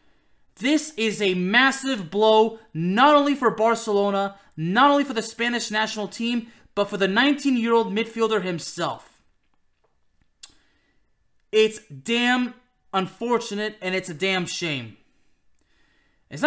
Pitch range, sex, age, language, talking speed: 205-275 Hz, male, 20-39, English, 115 wpm